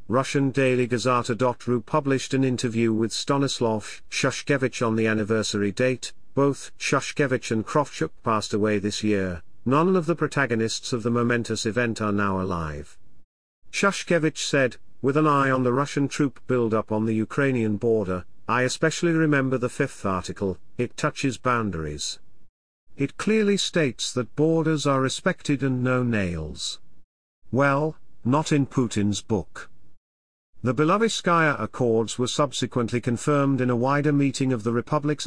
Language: English